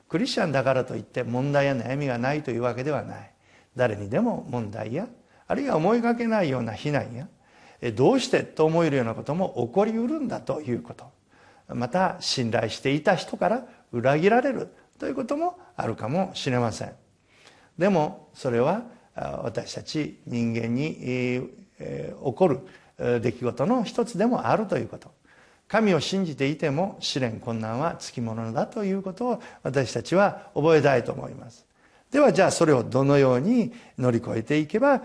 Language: Japanese